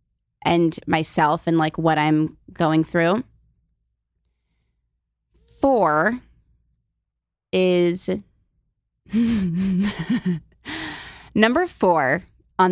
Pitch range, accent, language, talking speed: 155-215 Hz, American, English, 60 wpm